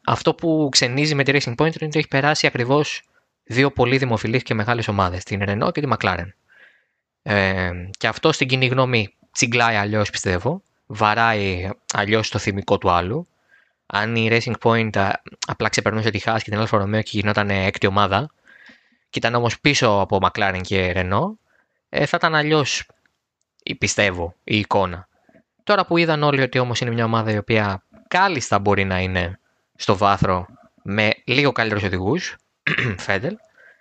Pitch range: 100-140 Hz